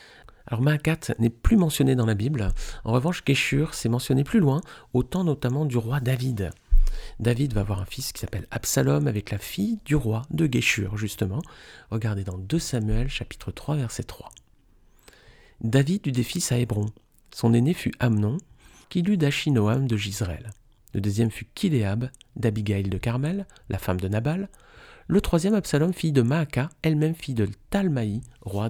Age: 40-59